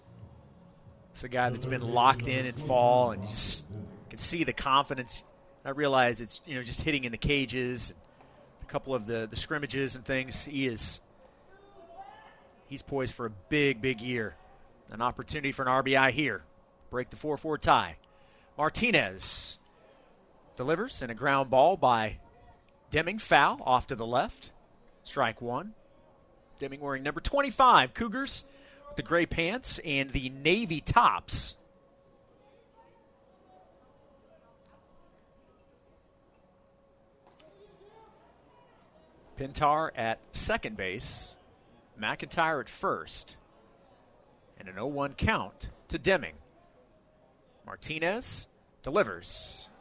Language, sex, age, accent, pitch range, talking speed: English, male, 30-49, American, 115-150 Hz, 115 wpm